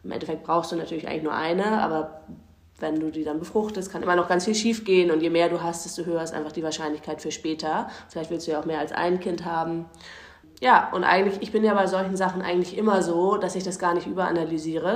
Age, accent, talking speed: 20-39, German, 250 wpm